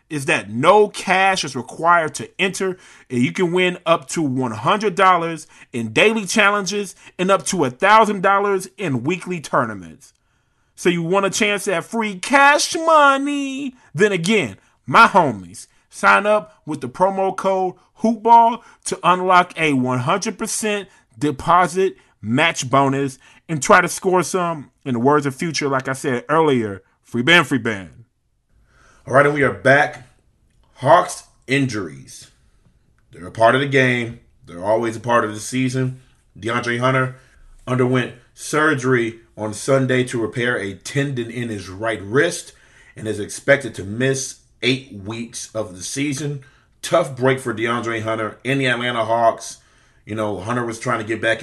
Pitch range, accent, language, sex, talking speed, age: 120-180 Hz, American, English, male, 155 wpm, 30-49